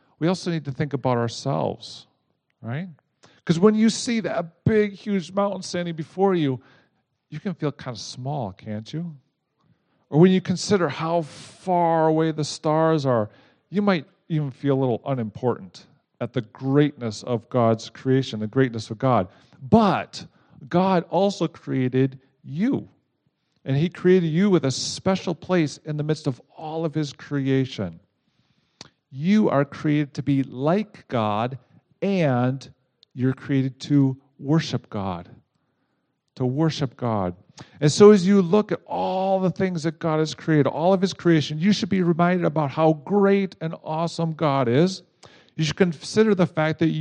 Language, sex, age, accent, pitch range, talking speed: English, male, 50-69, American, 135-180 Hz, 160 wpm